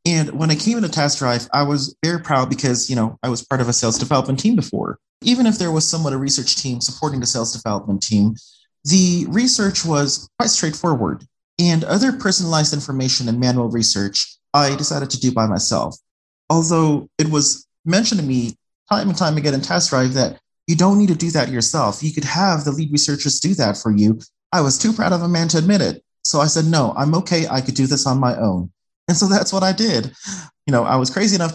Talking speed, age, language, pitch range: 225 wpm, 30-49, English, 120-160 Hz